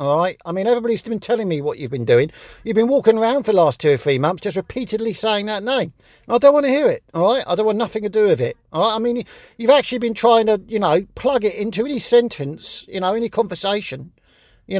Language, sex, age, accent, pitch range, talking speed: English, male, 50-69, British, 160-240 Hz, 265 wpm